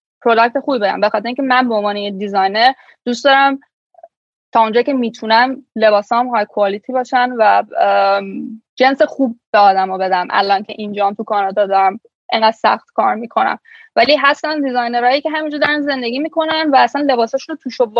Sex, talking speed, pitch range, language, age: female, 155 wpm, 210-265 Hz, Persian, 10-29